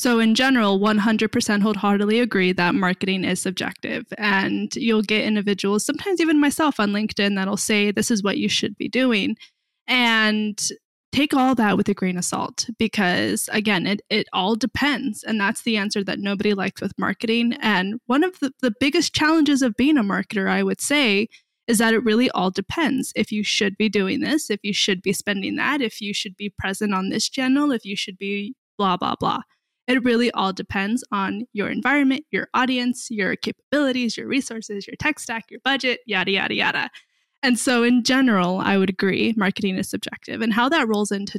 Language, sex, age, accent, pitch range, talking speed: English, female, 20-39, American, 205-255 Hz, 195 wpm